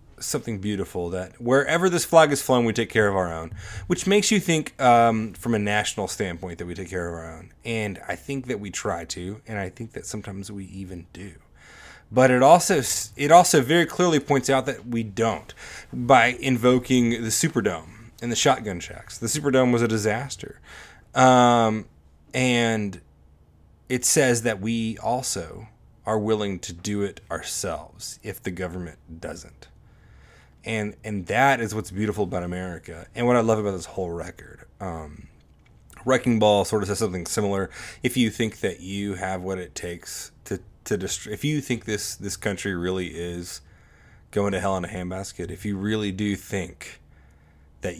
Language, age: English, 30-49